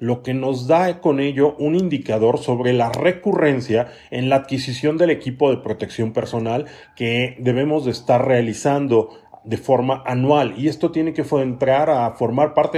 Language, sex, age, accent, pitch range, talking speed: Spanish, male, 40-59, Mexican, 125-155 Hz, 165 wpm